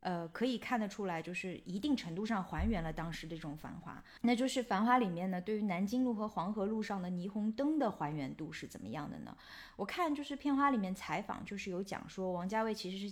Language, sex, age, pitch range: Chinese, female, 20-39, 175-230 Hz